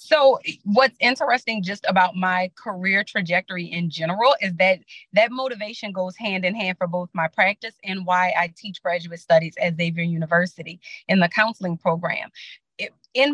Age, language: 30-49, English